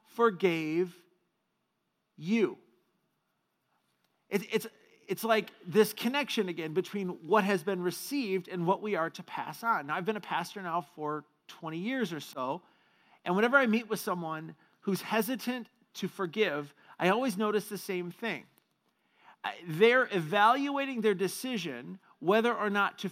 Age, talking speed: 40-59, 140 wpm